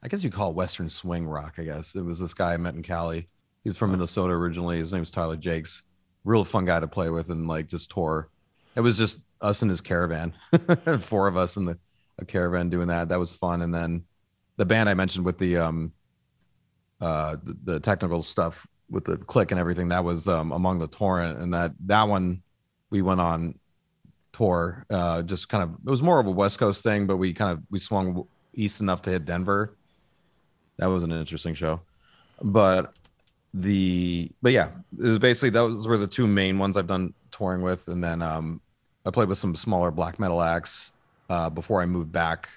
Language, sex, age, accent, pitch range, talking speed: English, male, 30-49, American, 85-100 Hz, 210 wpm